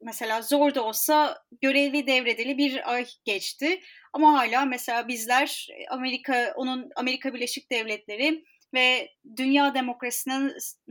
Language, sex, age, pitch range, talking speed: Turkish, female, 30-49, 240-295 Hz, 115 wpm